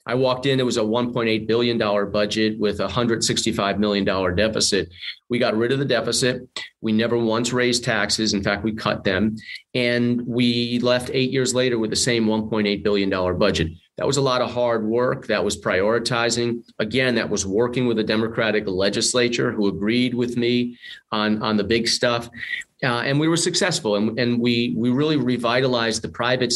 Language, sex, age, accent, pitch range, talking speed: English, male, 40-59, American, 105-125 Hz, 210 wpm